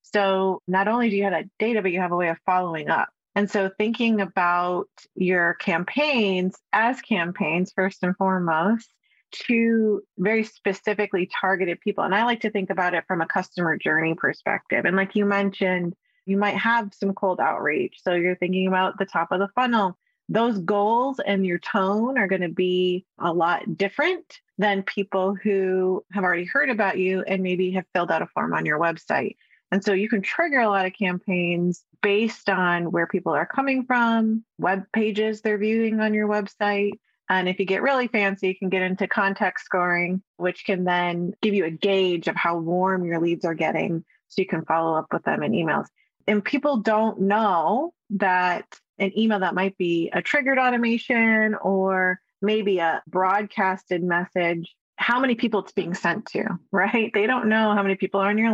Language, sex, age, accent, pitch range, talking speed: English, female, 30-49, American, 180-215 Hz, 190 wpm